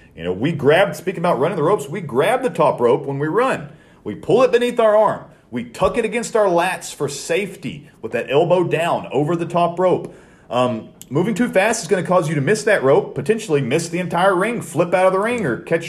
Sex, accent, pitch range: male, American, 125-190 Hz